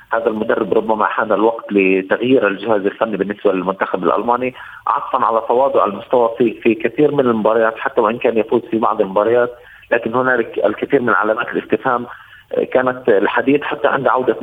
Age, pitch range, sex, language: 30-49, 110-125 Hz, male, Arabic